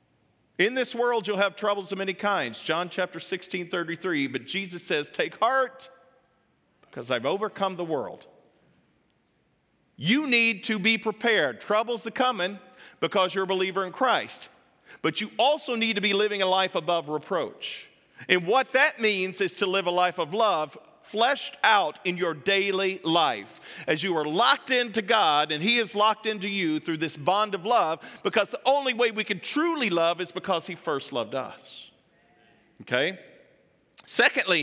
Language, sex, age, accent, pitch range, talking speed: English, male, 40-59, American, 185-235 Hz, 170 wpm